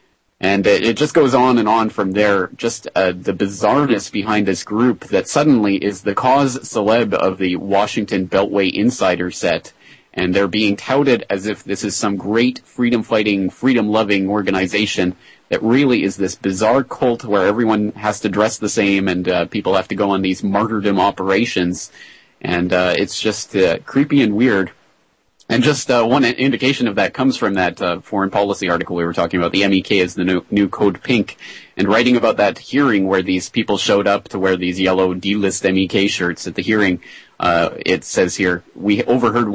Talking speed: 190 wpm